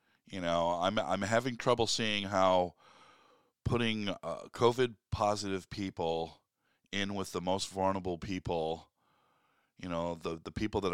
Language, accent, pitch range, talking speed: English, American, 90-120 Hz, 130 wpm